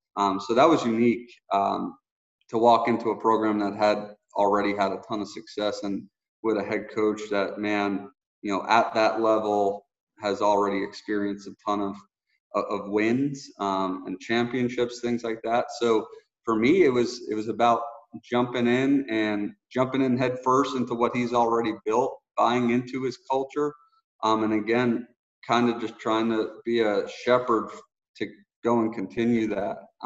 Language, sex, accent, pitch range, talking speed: English, male, American, 105-120 Hz, 170 wpm